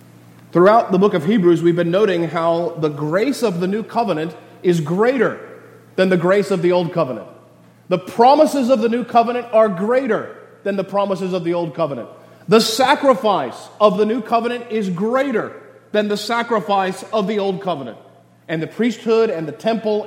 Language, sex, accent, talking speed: English, male, American, 180 wpm